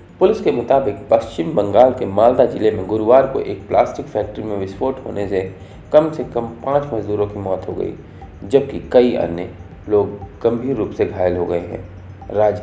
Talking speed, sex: 185 wpm, male